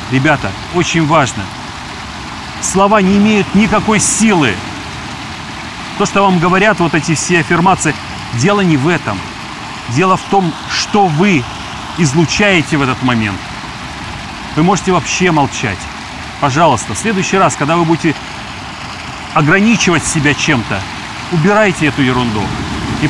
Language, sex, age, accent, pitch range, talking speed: Russian, male, 30-49, native, 120-180 Hz, 120 wpm